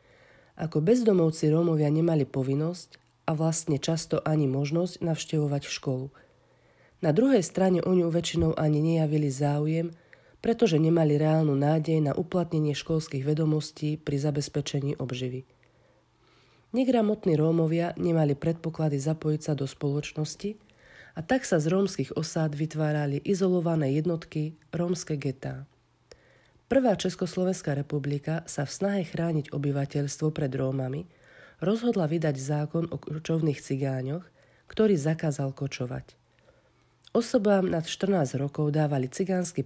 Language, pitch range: Slovak, 145-170 Hz